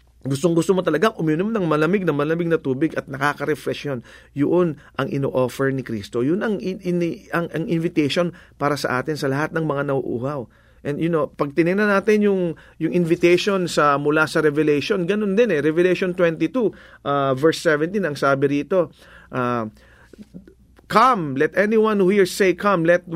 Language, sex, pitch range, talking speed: English, male, 145-195 Hz, 170 wpm